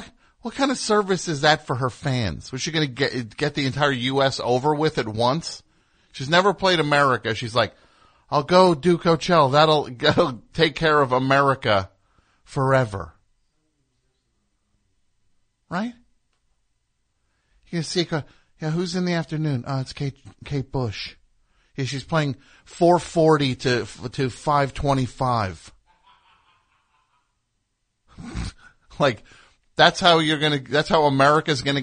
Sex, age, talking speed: male, 50-69, 130 wpm